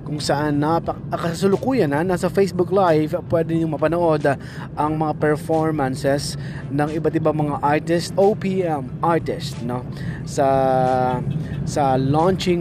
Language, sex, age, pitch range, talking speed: Filipino, male, 20-39, 145-160 Hz, 135 wpm